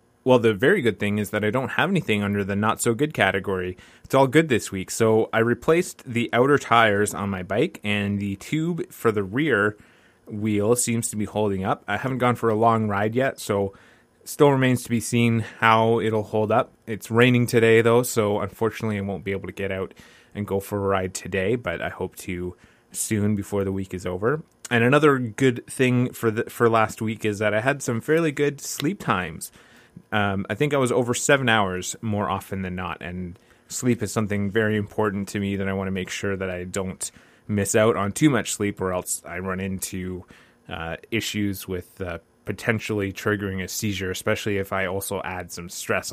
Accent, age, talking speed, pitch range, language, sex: American, 20-39, 210 wpm, 100-125 Hz, English, male